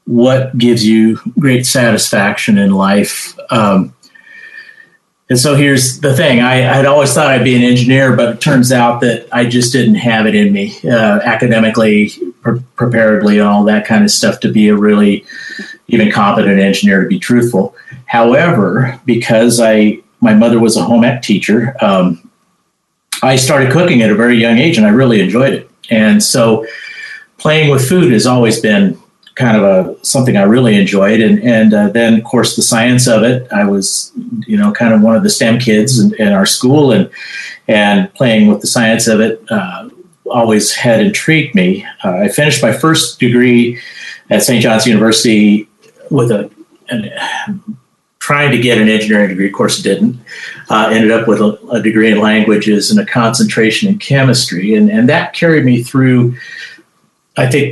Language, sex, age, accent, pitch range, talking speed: English, male, 40-59, American, 110-145 Hz, 180 wpm